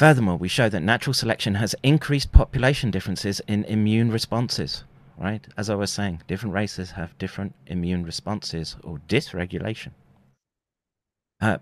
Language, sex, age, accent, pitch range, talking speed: English, male, 30-49, British, 85-110 Hz, 140 wpm